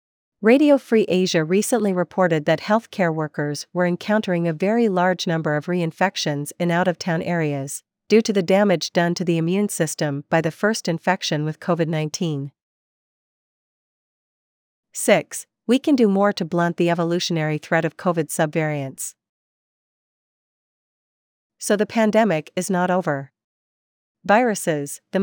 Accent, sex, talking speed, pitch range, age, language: American, female, 130 wpm, 160-200 Hz, 40-59, English